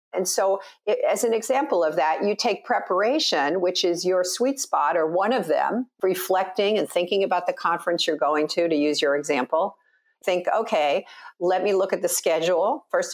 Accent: American